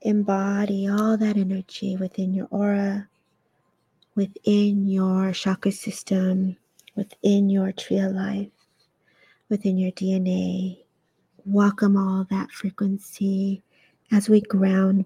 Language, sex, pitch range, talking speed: English, female, 190-210 Hz, 100 wpm